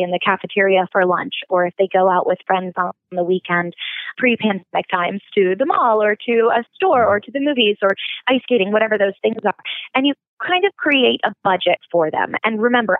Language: English